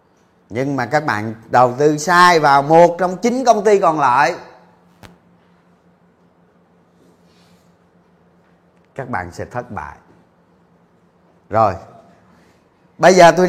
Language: Vietnamese